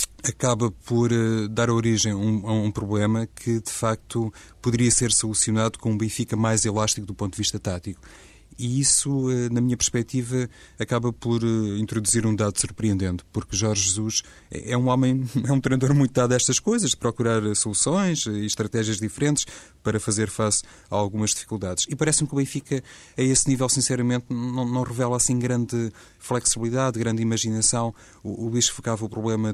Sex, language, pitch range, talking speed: male, Portuguese, 105-125 Hz, 170 wpm